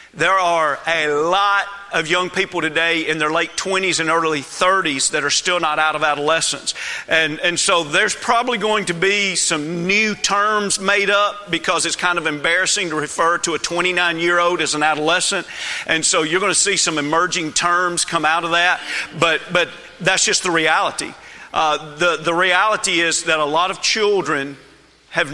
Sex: male